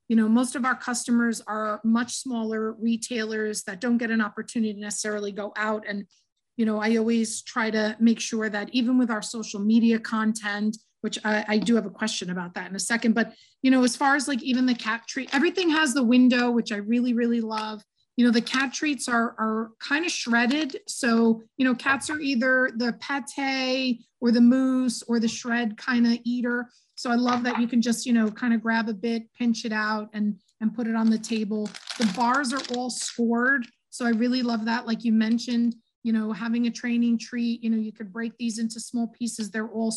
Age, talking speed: 30-49, 220 wpm